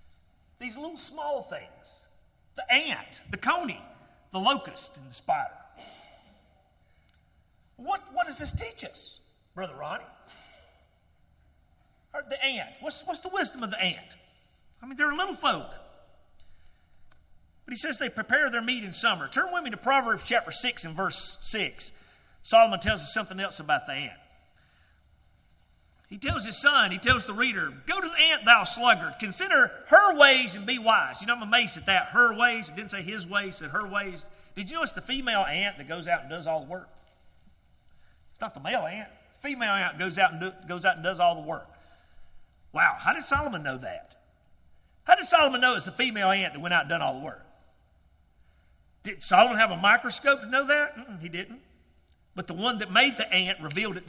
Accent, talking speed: American, 195 wpm